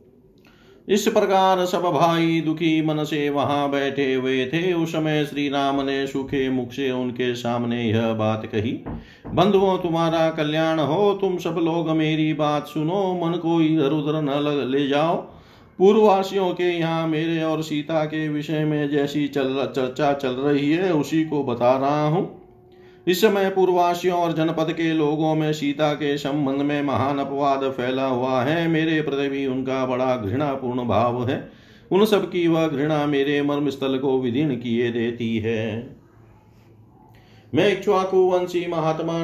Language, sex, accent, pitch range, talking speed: Hindi, male, native, 135-165 Hz, 160 wpm